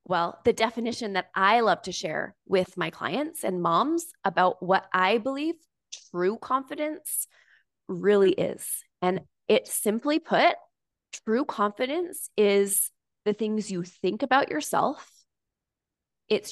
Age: 20-39